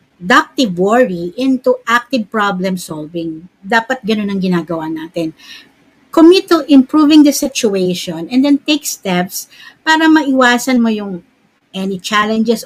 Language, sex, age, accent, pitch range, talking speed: Filipino, female, 50-69, native, 190-270 Hz, 125 wpm